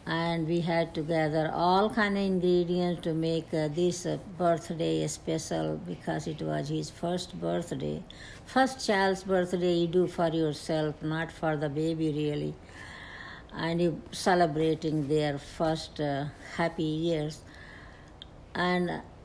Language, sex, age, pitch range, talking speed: English, female, 60-79, 150-180 Hz, 135 wpm